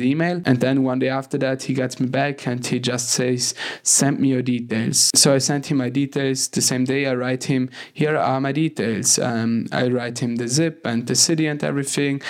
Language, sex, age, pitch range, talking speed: English, male, 20-39, 125-140 Hz, 225 wpm